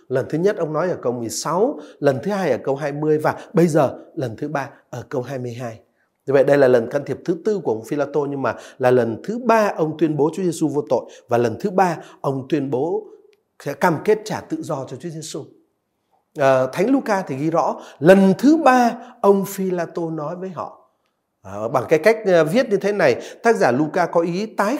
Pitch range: 150-215 Hz